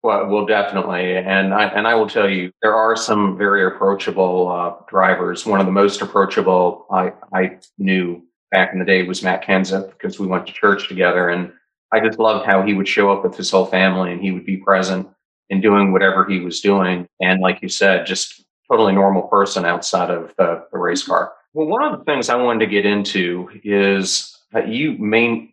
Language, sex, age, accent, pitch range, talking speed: English, male, 40-59, American, 95-105 Hz, 210 wpm